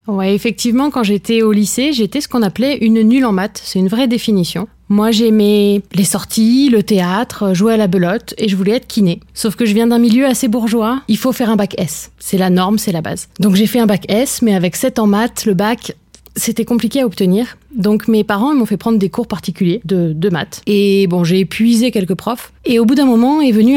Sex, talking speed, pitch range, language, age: female, 240 wpm, 195-235 Hz, French, 20-39